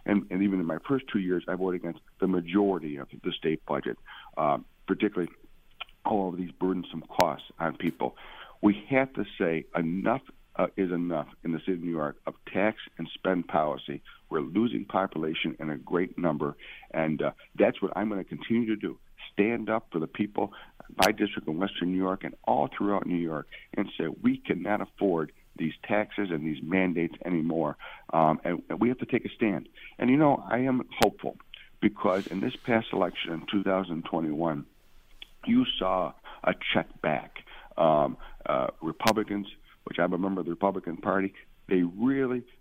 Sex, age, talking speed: male, 60-79, 180 wpm